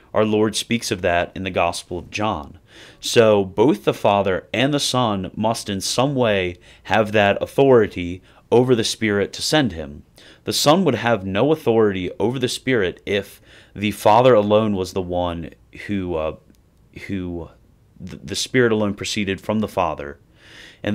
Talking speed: 165 wpm